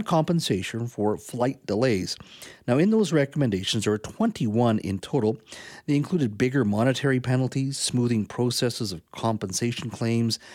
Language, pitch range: English, 105-135 Hz